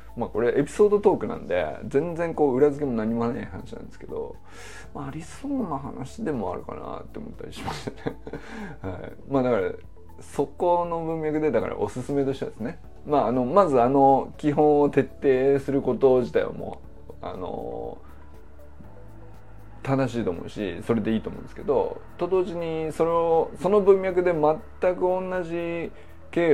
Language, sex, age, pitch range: Japanese, male, 20-39, 115-170 Hz